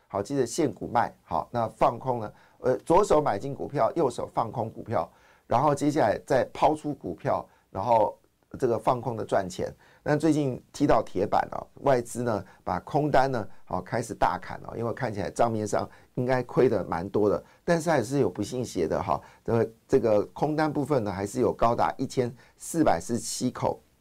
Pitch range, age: 105-140 Hz, 50-69